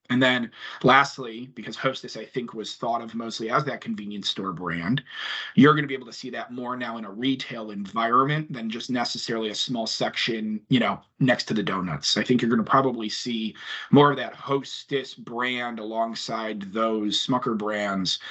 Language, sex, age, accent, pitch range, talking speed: English, male, 30-49, American, 110-135 Hz, 190 wpm